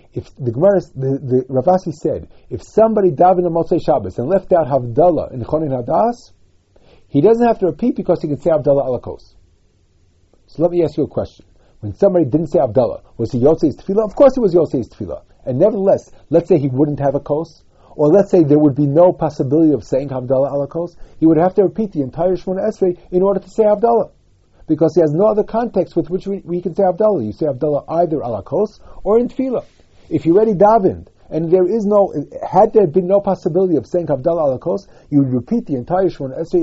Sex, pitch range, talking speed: male, 120-180 Hz, 220 wpm